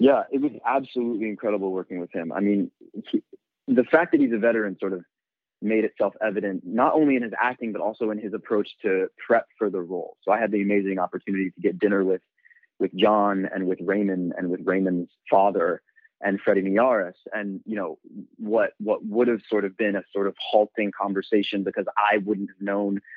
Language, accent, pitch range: English, American, 100-120 Hz